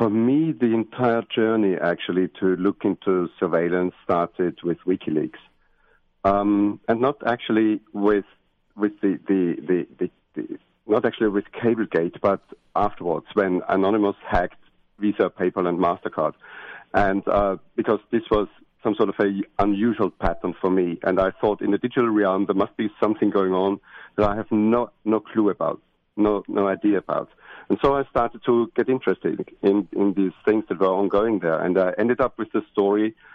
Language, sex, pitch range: English, male, 95-110 Hz